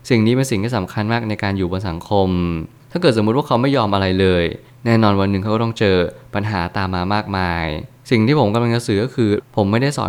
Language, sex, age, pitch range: Thai, male, 20-39, 100-120 Hz